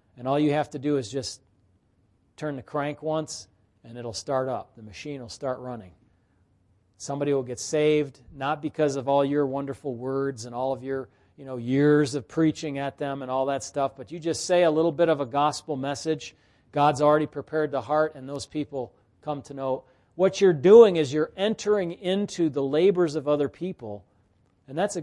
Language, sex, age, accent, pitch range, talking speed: English, male, 40-59, American, 125-170 Hz, 200 wpm